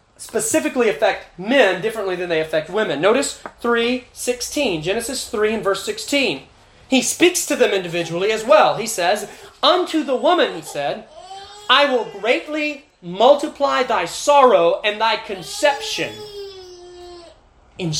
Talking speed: 135 wpm